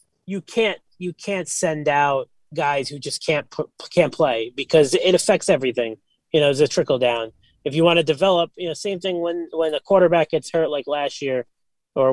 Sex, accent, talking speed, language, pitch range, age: male, American, 210 wpm, English, 130-170 Hz, 20-39